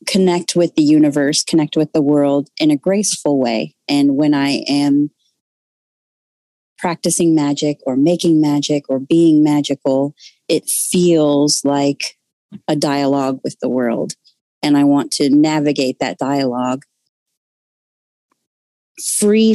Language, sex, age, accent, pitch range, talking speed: English, female, 30-49, American, 140-165 Hz, 125 wpm